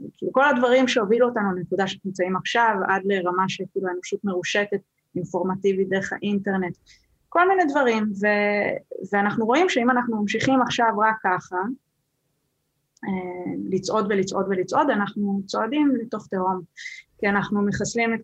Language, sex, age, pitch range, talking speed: Hebrew, female, 20-39, 175-215 Hz, 130 wpm